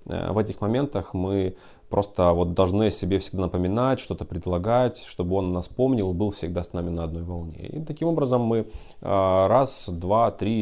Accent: native